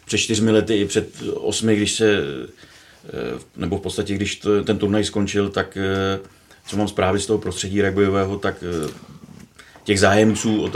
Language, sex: Czech, male